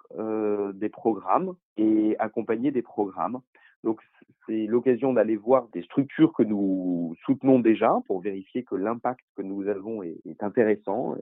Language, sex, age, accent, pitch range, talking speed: French, male, 40-59, French, 105-130 Hz, 150 wpm